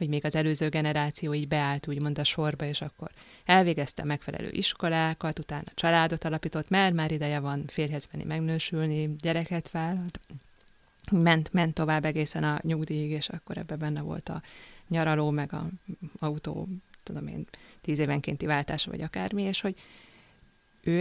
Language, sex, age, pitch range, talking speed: Hungarian, female, 20-39, 150-170 Hz, 150 wpm